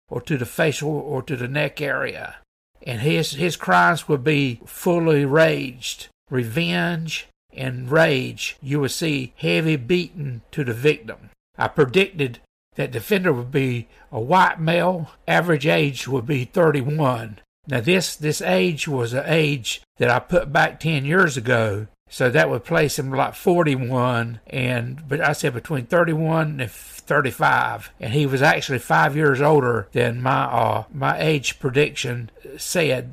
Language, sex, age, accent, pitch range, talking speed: English, male, 60-79, American, 125-160 Hz, 155 wpm